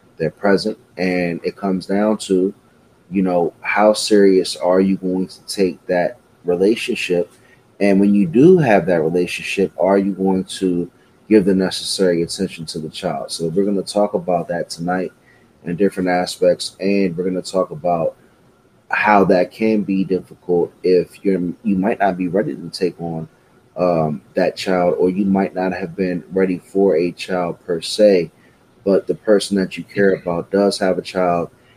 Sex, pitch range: male, 90-100 Hz